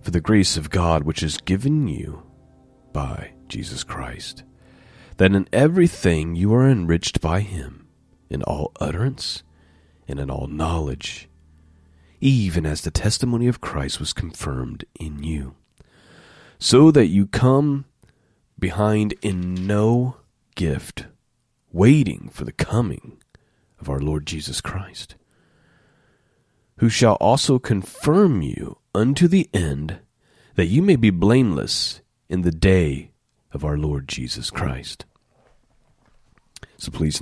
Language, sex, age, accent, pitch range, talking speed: English, male, 40-59, American, 80-110 Hz, 125 wpm